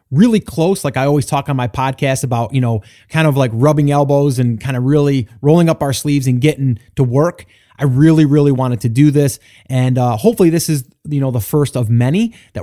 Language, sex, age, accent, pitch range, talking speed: English, male, 30-49, American, 125-155 Hz, 230 wpm